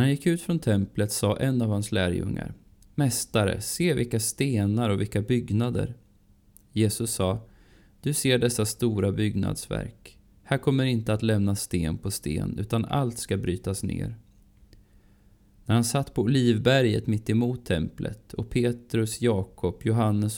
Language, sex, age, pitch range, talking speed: Swedish, male, 20-39, 100-120 Hz, 145 wpm